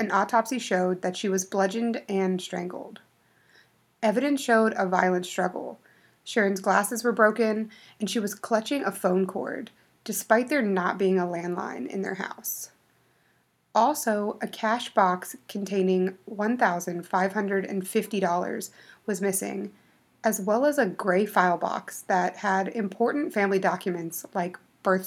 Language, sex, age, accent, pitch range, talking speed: English, female, 30-49, American, 185-225 Hz, 135 wpm